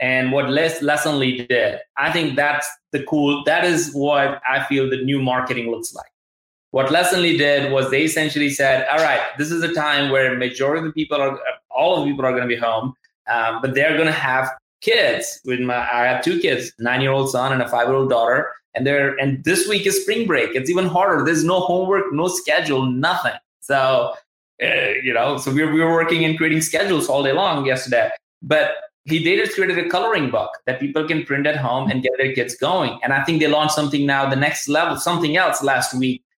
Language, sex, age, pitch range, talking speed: English, male, 20-39, 130-165 Hz, 225 wpm